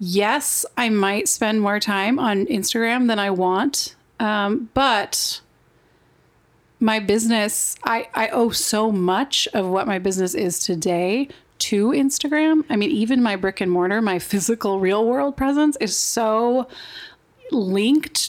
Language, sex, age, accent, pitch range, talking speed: English, female, 30-49, American, 205-275 Hz, 140 wpm